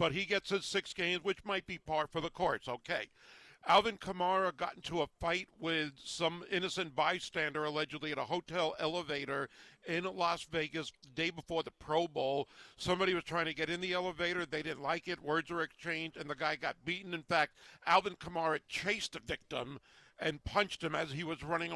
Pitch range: 160-190 Hz